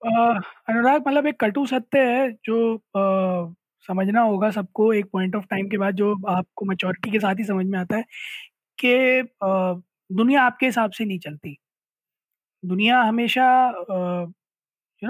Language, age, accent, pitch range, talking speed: Hindi, 20-39, native, 195-250 Hz, 145 wpm